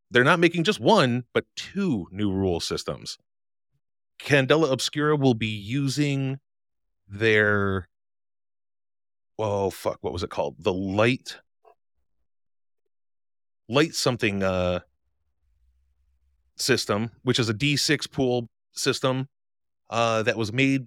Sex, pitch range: male, 95-125 Hz